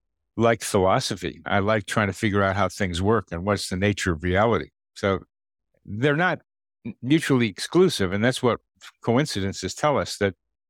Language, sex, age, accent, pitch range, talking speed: English, male, 60-79, American, 95-120 Hz, 165 wpm